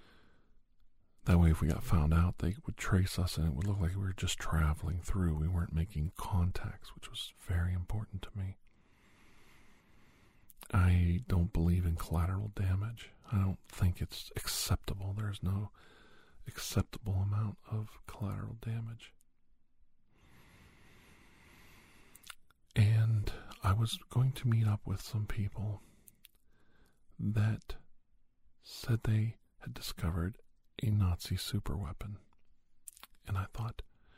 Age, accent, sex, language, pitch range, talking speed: 50-69, American, male, English, 90-110 Hz, 125 wpm